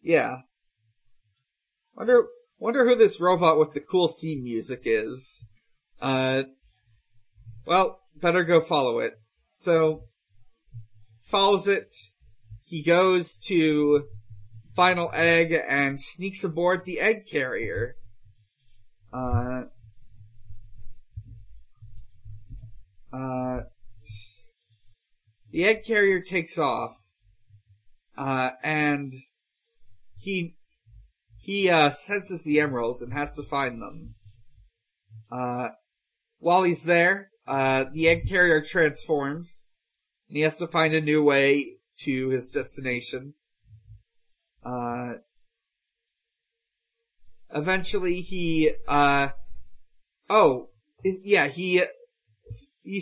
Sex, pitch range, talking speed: male, 110-170 Hz, 90 wpm